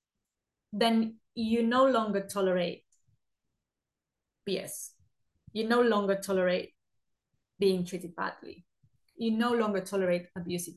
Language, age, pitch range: English, 20-39, 190-255 Hz